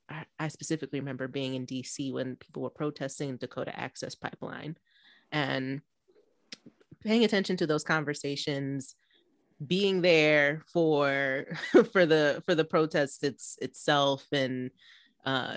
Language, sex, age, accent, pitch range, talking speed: English, female, 30-49, American, 130-160 Hz, 120 wpm